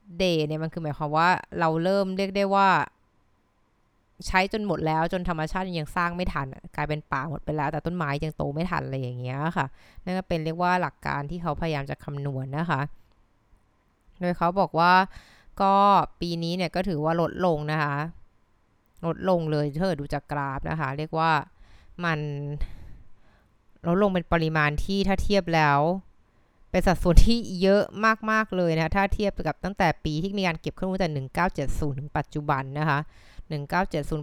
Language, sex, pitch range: Thai, female, 150-185 Hz